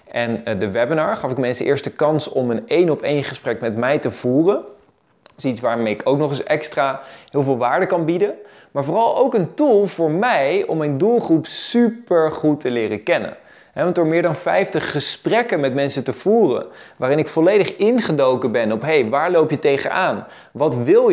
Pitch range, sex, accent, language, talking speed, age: 130-170 Hz, male, Dutch, Dutch, 200 wpm, 20-39